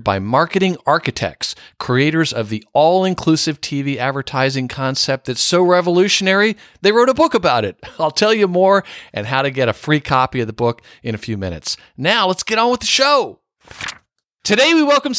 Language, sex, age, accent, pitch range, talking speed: English, male, 50-69, American, 130-195 Hz, 185 wpm